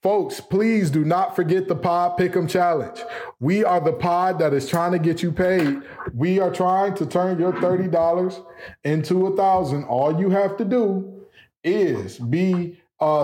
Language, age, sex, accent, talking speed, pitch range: English, 20-39, male, American, 170 wpm, 145-190 Hz